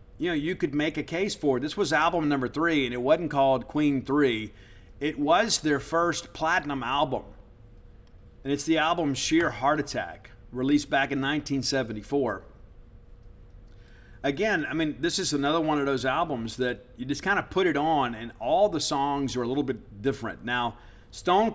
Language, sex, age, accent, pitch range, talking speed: English, male, 50-69, American, 115-145 Hz, 185 wpm